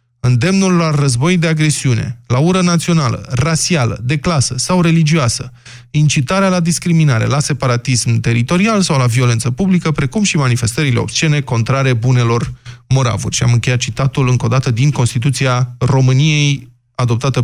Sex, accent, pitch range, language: male, native, 125-165 Hz, Romanian